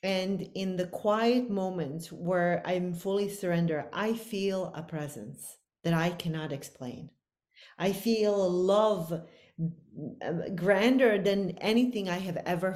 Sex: female